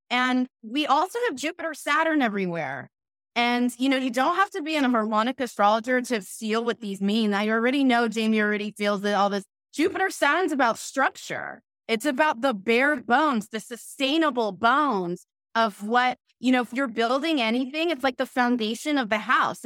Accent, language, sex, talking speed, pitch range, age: American, English, female, 180 wpm, 220-290 Hz, 20-39